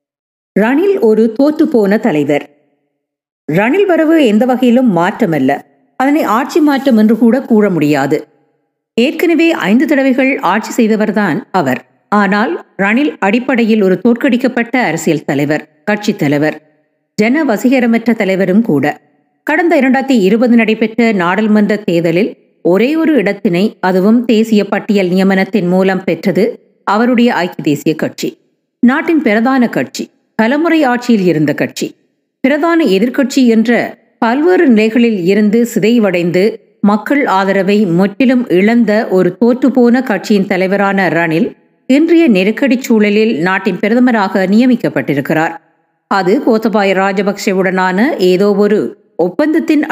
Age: 50-69